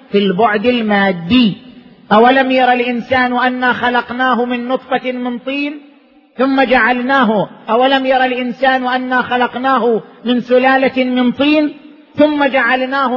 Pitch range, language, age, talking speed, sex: 210-265 Hz, Arabic, 40-59, 115 wpm, male